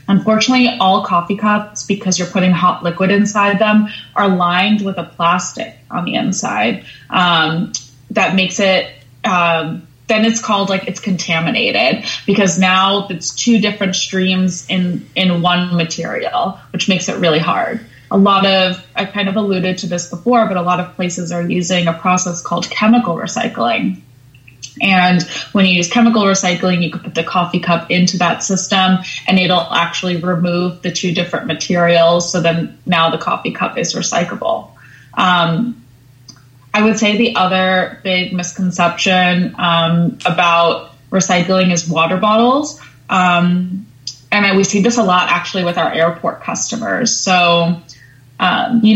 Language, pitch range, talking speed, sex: English, 175-195 Hz, 155 wpm, female